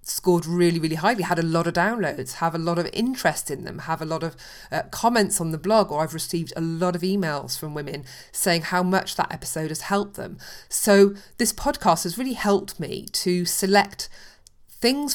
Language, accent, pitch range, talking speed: English, British, 160-195 Hz, 205 wpm